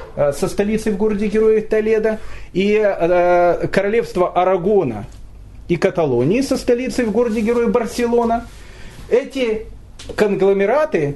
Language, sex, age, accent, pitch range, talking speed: Russian, male, 40-59, native, 135-225 Hz, 110 wpm